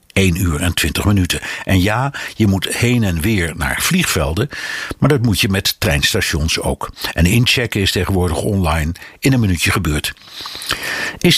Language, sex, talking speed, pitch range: Dutch, male, 165 wpm, 95-125 Hz